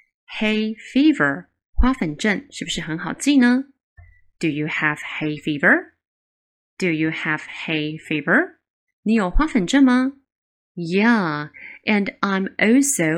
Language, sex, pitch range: Chinese, female, 175-255 Hz